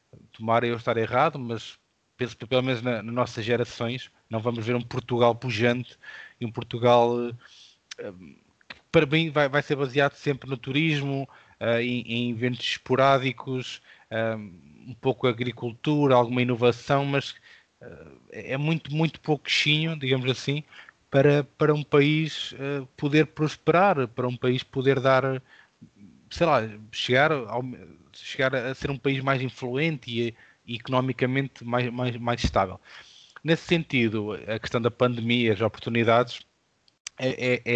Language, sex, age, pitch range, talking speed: Portuguese, male, 20-39, 115-135 Hz, 145 wpm